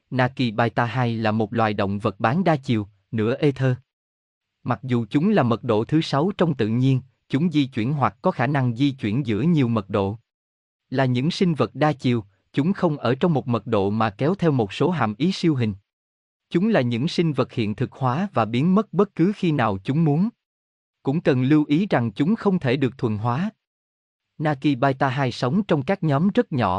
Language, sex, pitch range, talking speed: Vietnamese, male, 110-160 Hz, 215 wpm